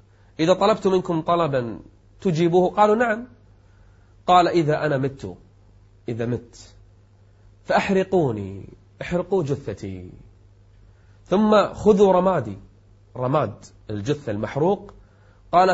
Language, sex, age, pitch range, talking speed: Arabic, male, 30-49, 100-160 Hz, 90 wpm